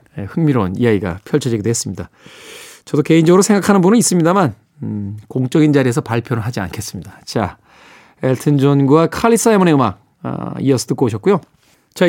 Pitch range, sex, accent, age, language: 130-190 Hz, male, native, 20-39, Korean